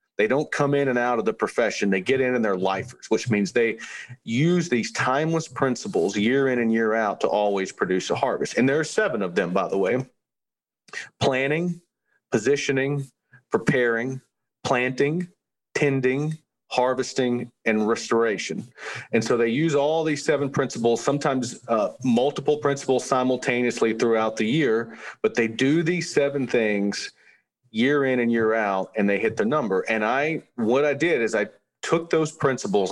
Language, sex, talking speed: English, male, 165 wpm